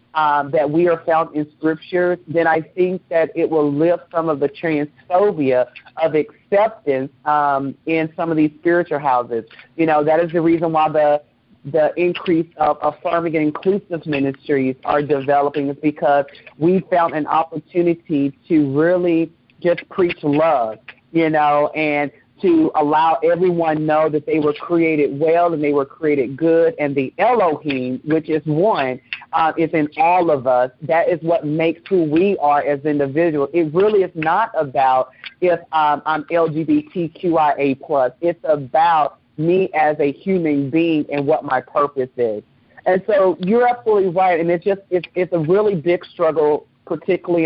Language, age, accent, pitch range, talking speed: English, 40-59, American, 145-170 Hz, 165 wpm